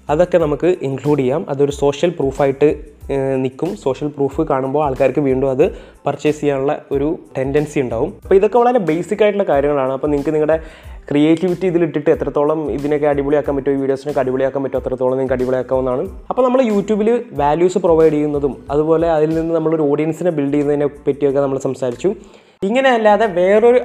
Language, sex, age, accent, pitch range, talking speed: Malayalam, male, 20-39, native, 140-175 Hz, 145 wpm